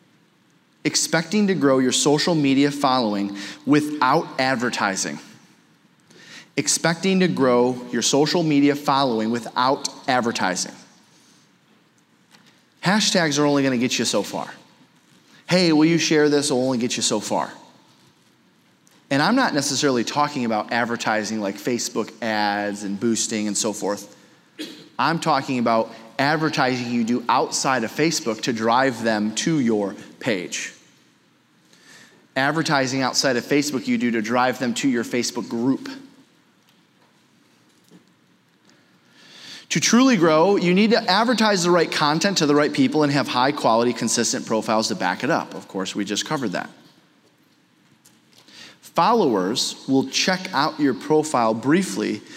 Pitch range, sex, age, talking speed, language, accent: 115-155 Hz, male, 30-49, 135 wpm, English, American